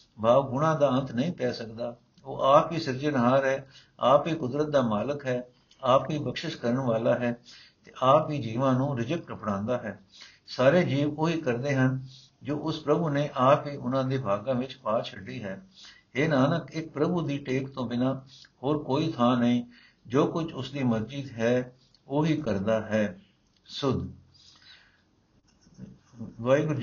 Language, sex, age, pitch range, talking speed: Punjabi, male, 60-79, 125-145 Hz, 160 wpm